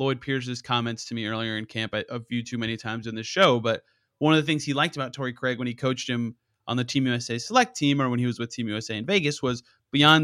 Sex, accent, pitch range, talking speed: male, American, 120-150 Hz, 275 wpm